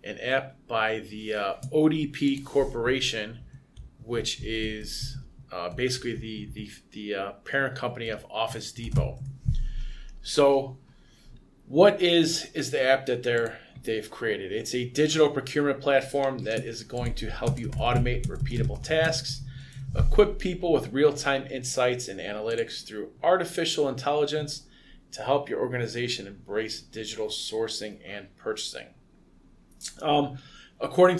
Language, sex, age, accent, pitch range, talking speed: English, male, 20-39, American, 120-150 Hz, 125 wpm